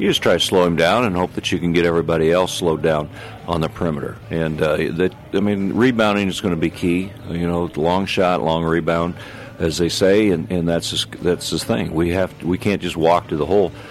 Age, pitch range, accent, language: 50-69, 80-95 Hz, American, English